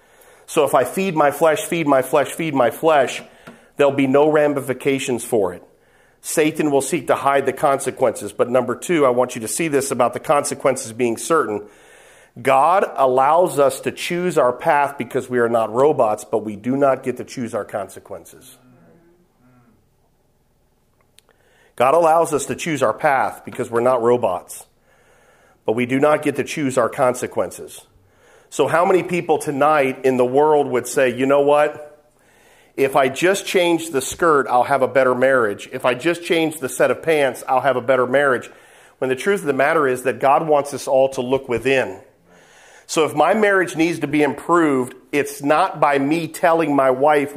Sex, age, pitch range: male, 40-59, 125-155 Hz